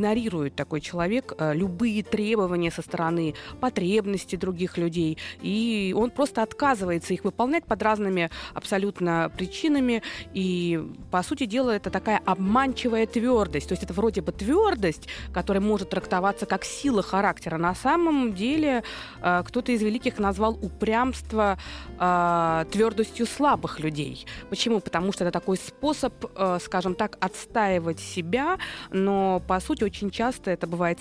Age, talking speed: 20-39, 135 wpm